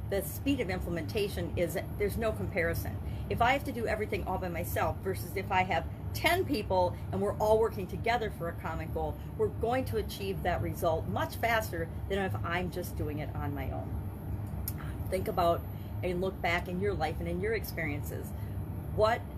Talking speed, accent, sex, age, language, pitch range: 190 wpm, American, female, 40-59, English, 95-105 Hz